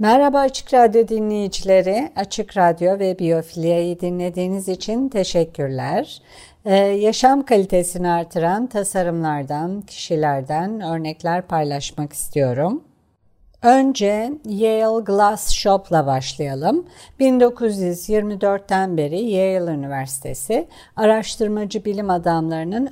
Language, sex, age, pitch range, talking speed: Turkish, female, 50-69, 165-220 Hz, 85 wpm